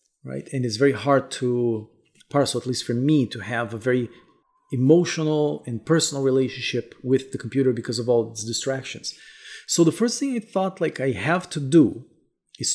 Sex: male